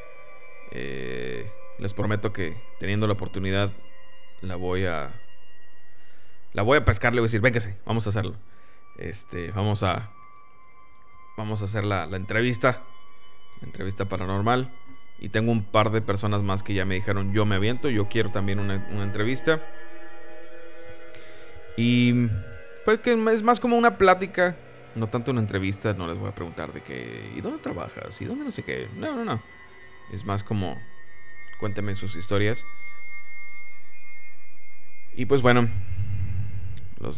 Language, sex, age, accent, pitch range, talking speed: Spanish, male, 30-49, Mexican, 95-115 Hz, 150 wpm